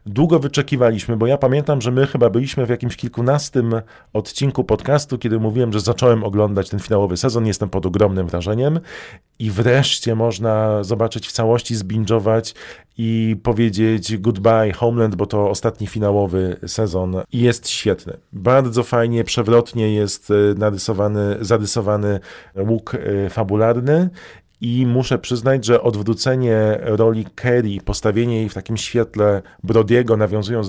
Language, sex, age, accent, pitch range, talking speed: Polish, male, 40-59, native, 105-125 Hz, 130 wpm